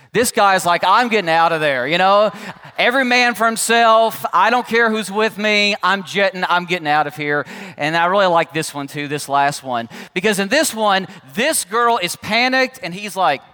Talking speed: 215 wpm